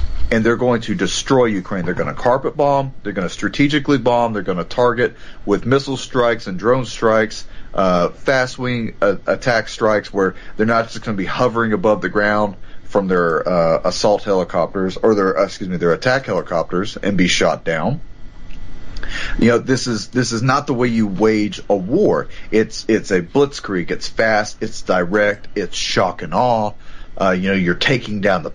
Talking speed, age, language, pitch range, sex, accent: 185 wpm, 40-59, English, 100-125 Hz, male, American